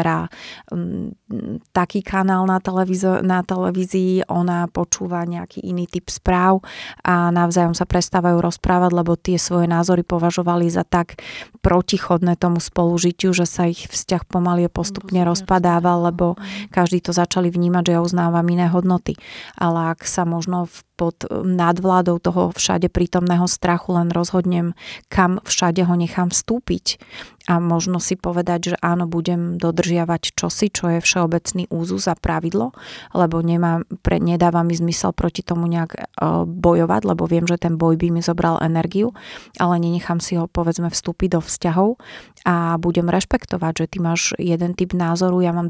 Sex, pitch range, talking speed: female, 170-180 Hz, 150 wpm